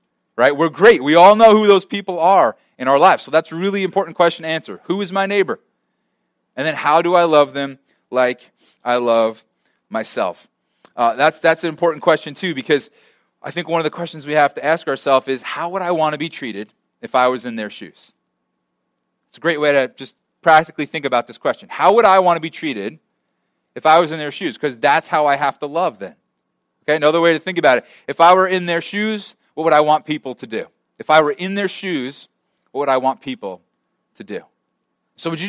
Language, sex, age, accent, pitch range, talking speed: English, male, 30-49, American, 130-170 Hz, 230 wpm